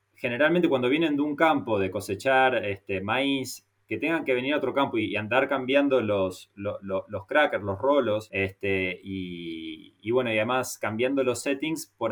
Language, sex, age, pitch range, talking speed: English, male, 20-39, 110-150 Hz, 190 wpm